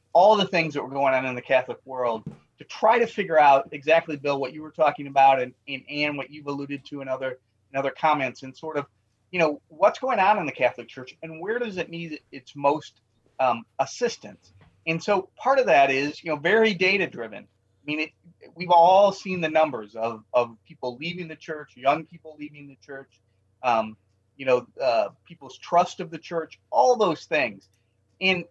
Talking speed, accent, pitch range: 210 wpm, American, 125-170 Hz